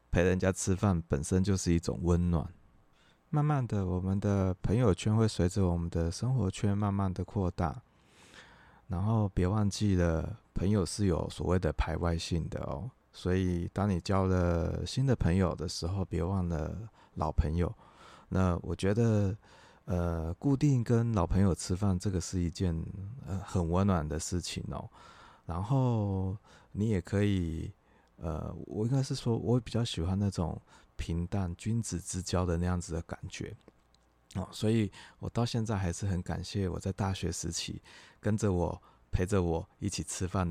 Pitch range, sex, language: 85-105 Hz, male, Chinese